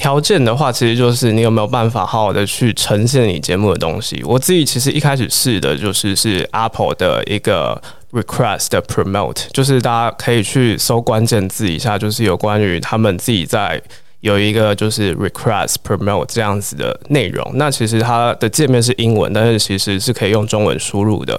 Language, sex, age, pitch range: Chinese, male, 20-39, 105-125 Hz